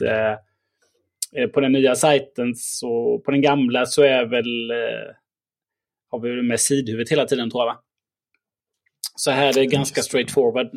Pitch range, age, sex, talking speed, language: 115-135 Hz, 20-39, male, 160 wpm, Swedish